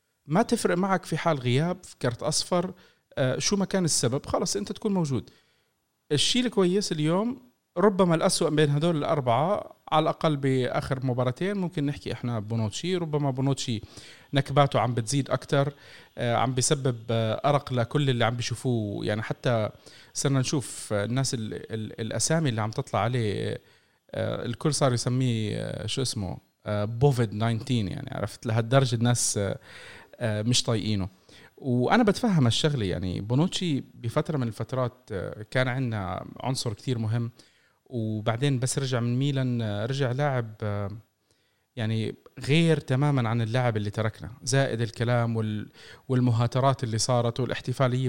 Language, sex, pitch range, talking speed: Arabic, male, 115-155 Hz, 140 wpm